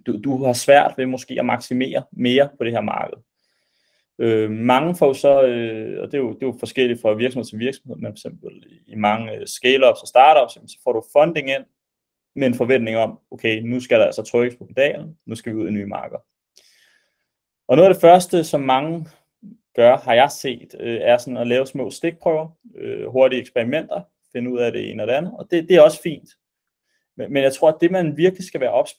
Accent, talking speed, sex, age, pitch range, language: native, 220 wpm, male, 30-49, 120-155 Hz, Danish